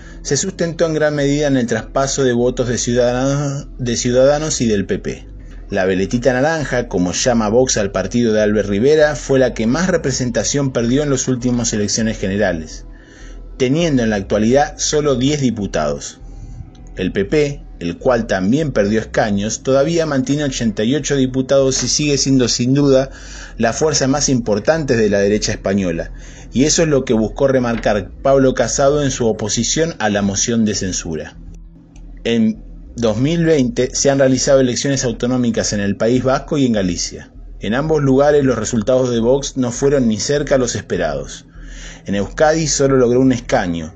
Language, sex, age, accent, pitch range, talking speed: Spanish, male, 20-39, Argentinian, 110-140 Hz, 165 wpm